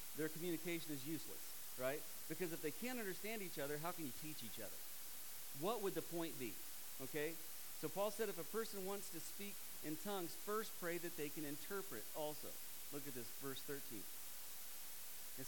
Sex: male